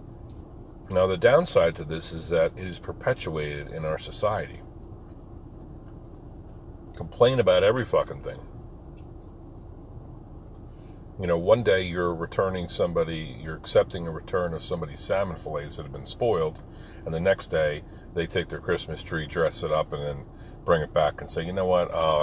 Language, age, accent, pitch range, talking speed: English, 50-69, American, 85-110 Hz, 160 wpm